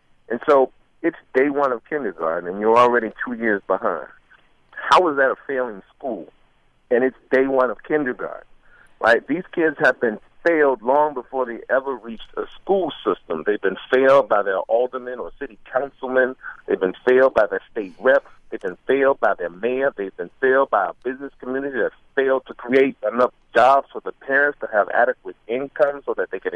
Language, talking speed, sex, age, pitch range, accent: English, 190 wpm, male, 50-69, 125-155 Hz, American